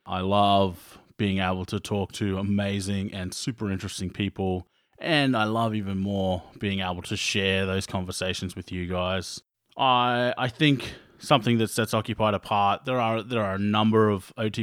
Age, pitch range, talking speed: 30-49, 95-120 Hz, 170 wpm